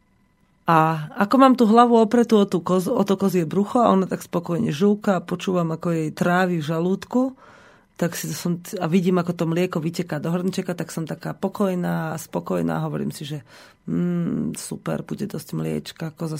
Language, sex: Slovak, female